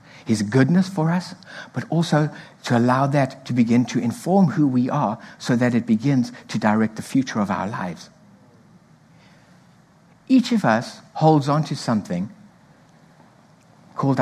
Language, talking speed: English, 150 wpm